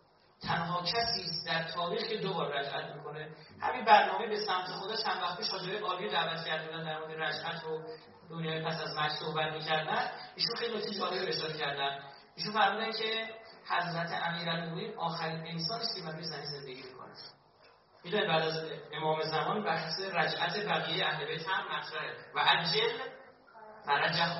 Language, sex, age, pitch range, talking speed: Persian, male, 40-59, 160-210 Hz, 165 wpm